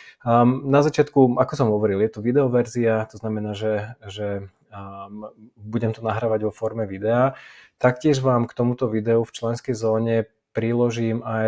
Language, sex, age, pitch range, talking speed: Slovak, male, 20-39, 105-120 Hz, 155 wpm